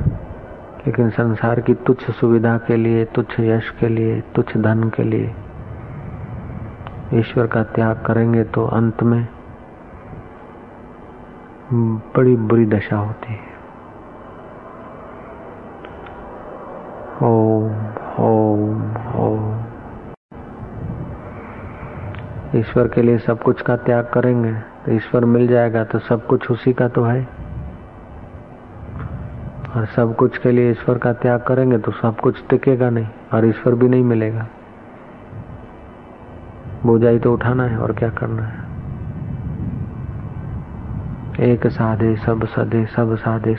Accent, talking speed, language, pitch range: native, 115 wpm, Hindi, 110-120 Hz